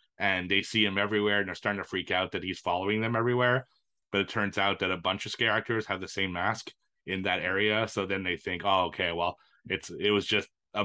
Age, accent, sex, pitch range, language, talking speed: 30-49, American, male, 95-115 Hz, English, 250 wpm